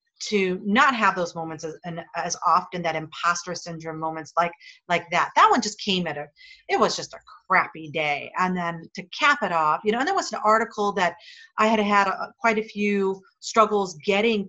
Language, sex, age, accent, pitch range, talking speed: English, female, 40-59, American, 170-230 Hz, 205 wpm